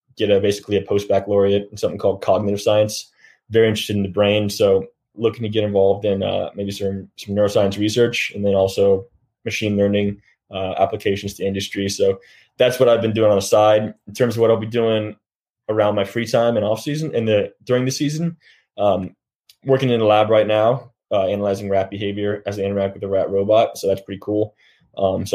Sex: male